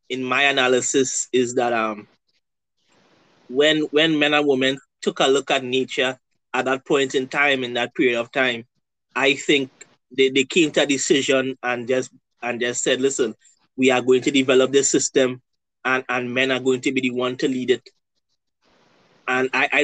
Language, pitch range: English, 130-145 Hz